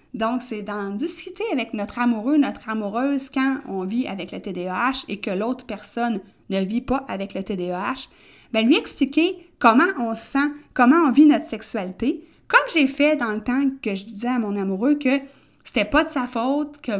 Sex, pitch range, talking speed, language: female, 205-275 Hz, 200 wpm, French